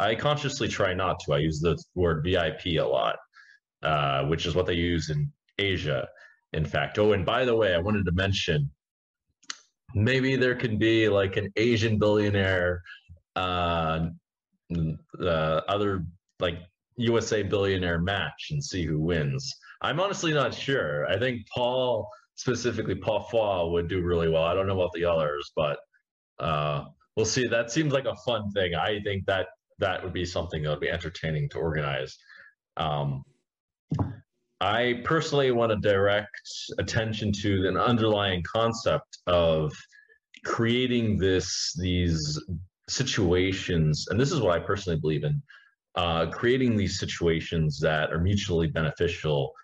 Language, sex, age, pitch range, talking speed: English, male, 30-49, 85-115 Hz, 150 wpm